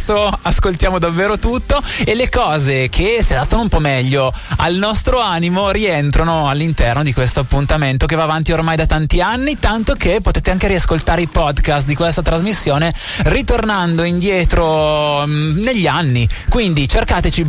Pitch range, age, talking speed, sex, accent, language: 150-195 Hz, 20-39, 150 wpm, male, native, Italian